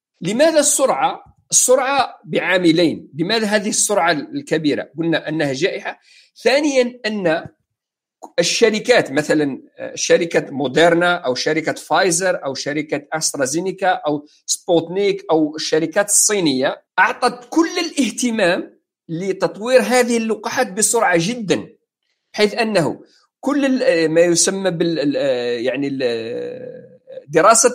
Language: English